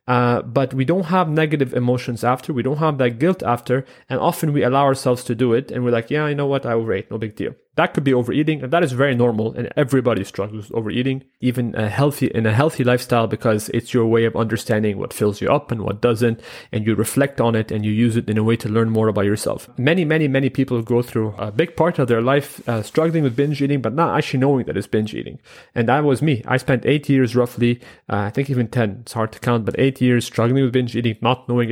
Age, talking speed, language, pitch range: 30-49, 260 wpm, English, 115-135 Hz